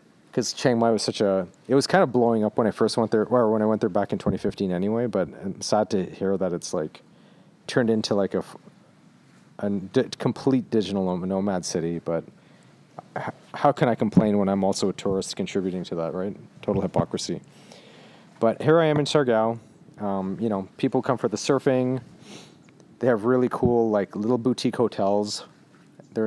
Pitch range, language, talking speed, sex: 95-125 Hz, English, 185 wpm, male